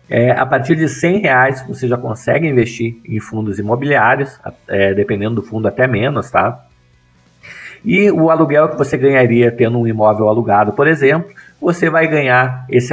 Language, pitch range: Portuguese, 105-135 Hz